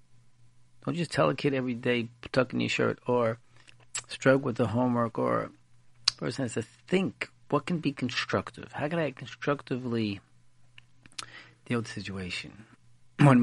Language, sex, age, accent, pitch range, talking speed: English, male, 50-69, American, 120-140 Hz, 145 wpm